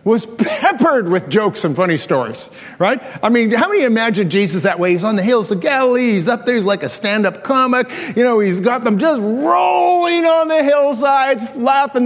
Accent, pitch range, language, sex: American, 195-245 Hz, English, male